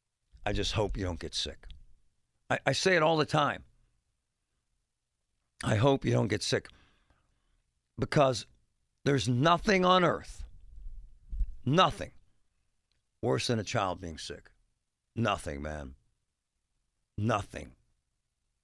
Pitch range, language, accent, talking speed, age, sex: 90-135 Hz, English, American, 115 wpm, 60-79, male